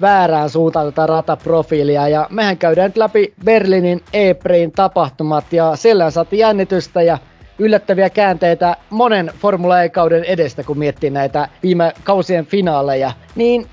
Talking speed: 130 wpm